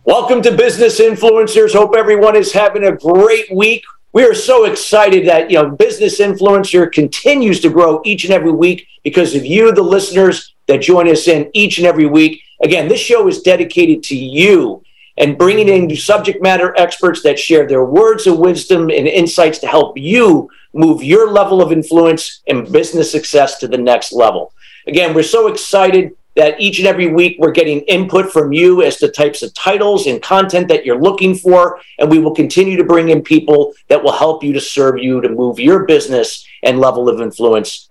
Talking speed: 195 wpm